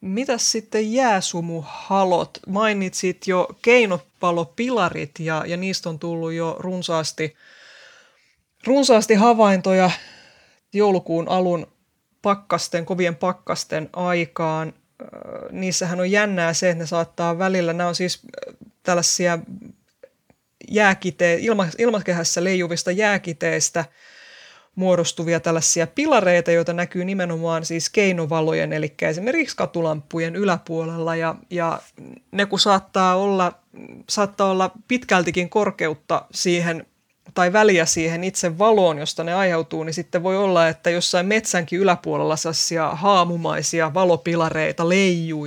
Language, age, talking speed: Finnish, 20-39, 105 wpm